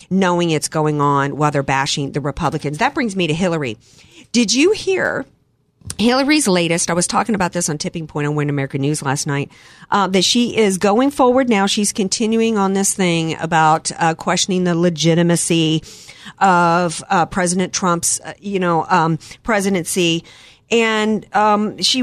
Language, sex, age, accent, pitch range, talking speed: English, female, 50-69, American, 170-235 Hz, 165 wpm